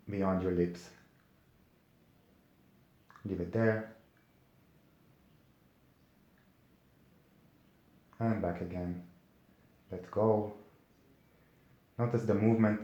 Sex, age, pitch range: male, 30-49, 95-115 Hz